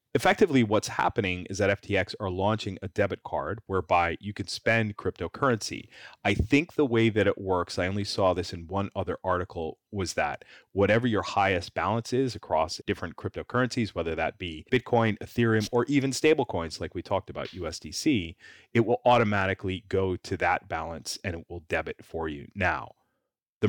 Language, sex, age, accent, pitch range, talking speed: English, male, 30-49, American, 95-120 Hz, 175 wpm